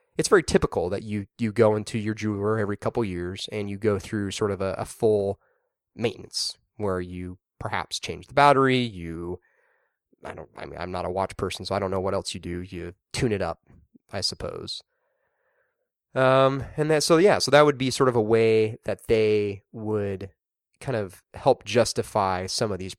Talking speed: 200 wpm